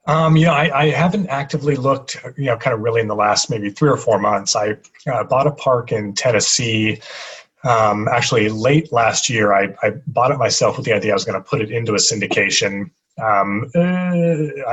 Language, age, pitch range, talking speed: English, 30-49, 105-140 Hz, 210 wpm